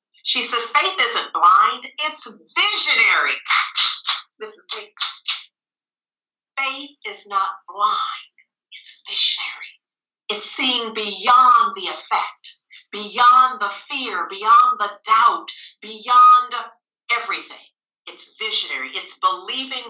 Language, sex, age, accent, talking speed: English, female, 50-69, American, 100 wpm